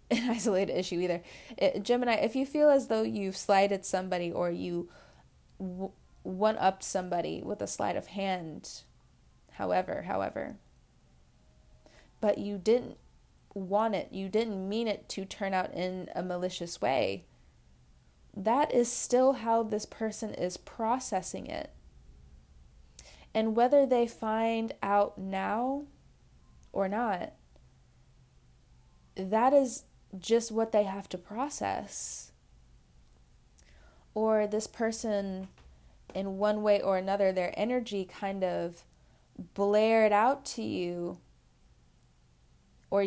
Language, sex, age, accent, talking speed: English, female, 20-39, American, 115 wpm